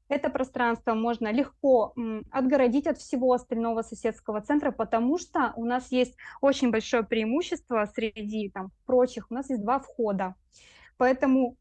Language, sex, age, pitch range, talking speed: Russian, female, 20-39, 220-265 Hz, 140 wpm